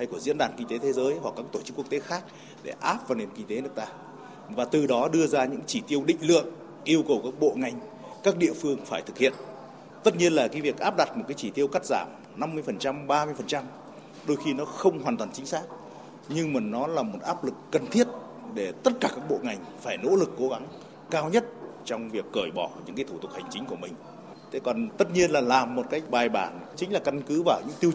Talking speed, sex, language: 255 wpm, male, Vietnamese